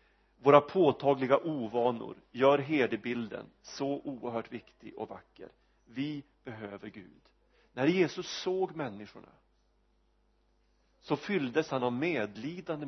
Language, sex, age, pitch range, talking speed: Swedish, male, 40-59, 115-155 Hz, 105 wpm